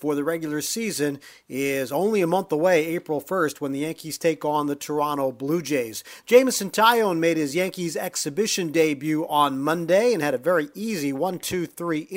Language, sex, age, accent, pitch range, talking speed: English, male, 40-59, American, 150-200 Hz, 175 wpm